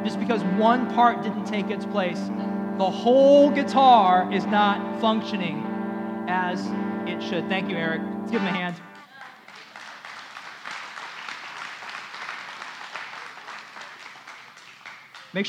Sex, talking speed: male, 100 wpm